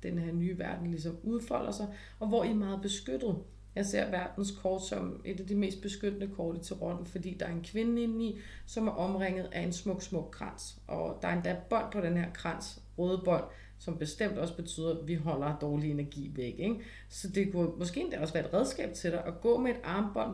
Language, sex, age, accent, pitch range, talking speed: Danish, female, 30-49, native, 155-200 Hz, 240 wpm